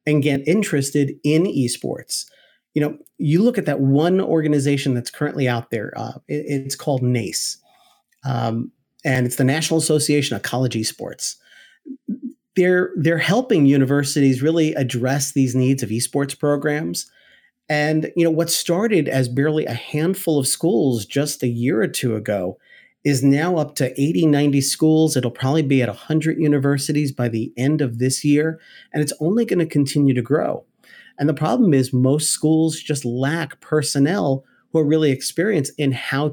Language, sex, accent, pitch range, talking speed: English, male, American, 135-165 Hz, 165 wpm